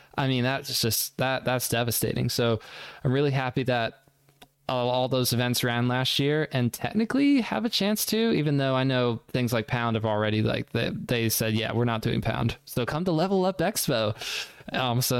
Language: English